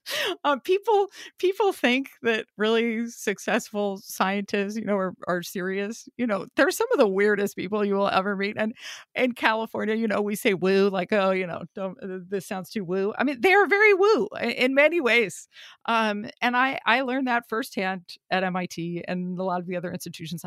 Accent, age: American, 40-59